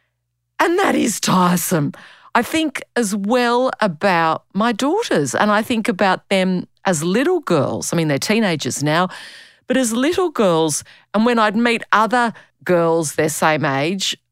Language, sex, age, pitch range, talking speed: English, female, 40-59, 180-275 Hz, 155 wpm